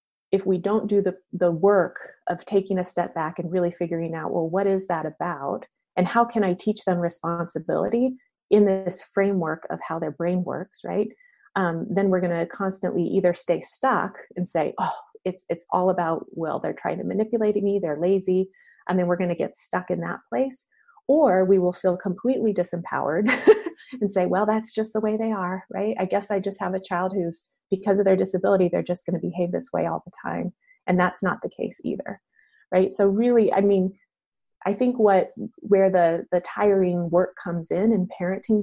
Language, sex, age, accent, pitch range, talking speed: English, female, 30-49, American, 175-205 Hz, 205 wpm